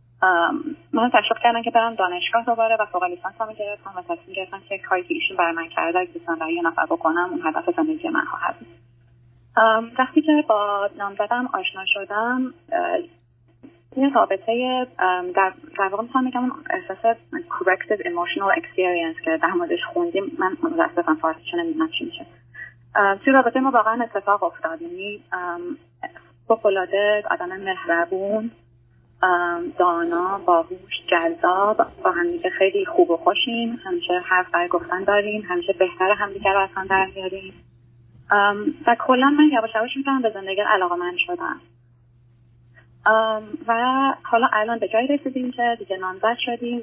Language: Persian